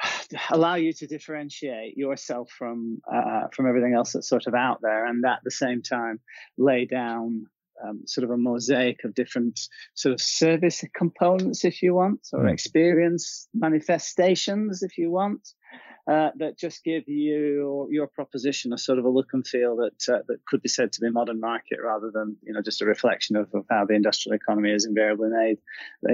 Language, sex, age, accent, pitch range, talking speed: English, male, 20-39, British, 120-160 Hz, 190 wpm